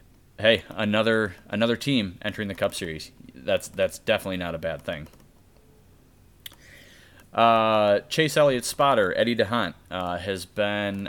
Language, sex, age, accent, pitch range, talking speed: English, male, 20-39, American, 90-110 Hz, 130 wpm